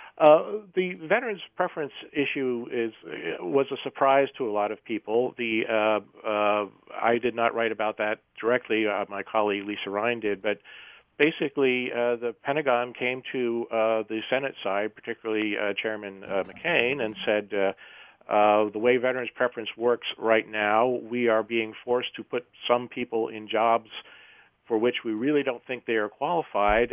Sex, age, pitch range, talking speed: male, 50-69, 105-125 Hz, 170 wpm